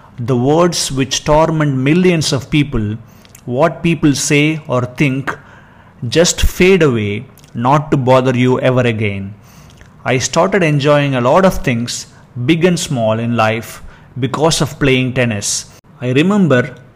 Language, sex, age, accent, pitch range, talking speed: English, male, 30-49, Indian, 120-155 Hz, 140 wpm